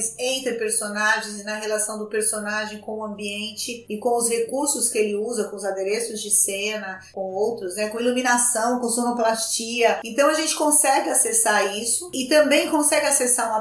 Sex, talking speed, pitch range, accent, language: female, 175 wpm, 210-245 Hz, Brazilian, Portuguese